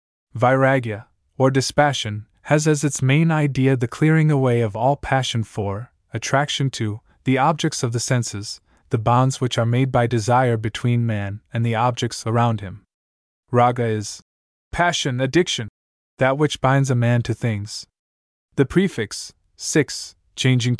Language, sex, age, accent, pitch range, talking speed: English, male, 20-39, American, 105-135 Hz, 145 wpm